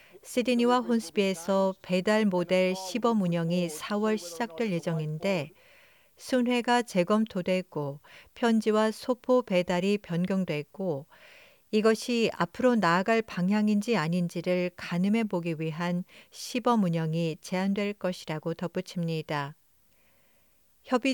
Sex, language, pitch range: female, Korean, 175-225 Hz